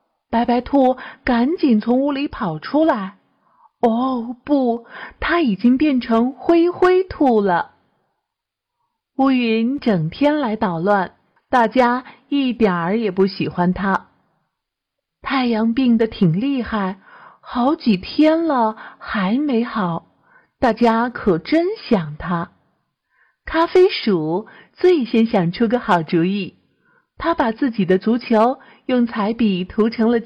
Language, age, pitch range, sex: Chinese, 50-69, 215-285 Hz, female